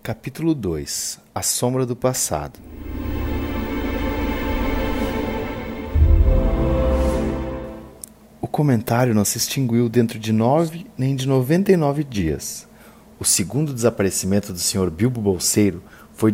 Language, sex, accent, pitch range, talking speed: Portuguese, male, Brazilian, 105-145 Hz, 105 wpm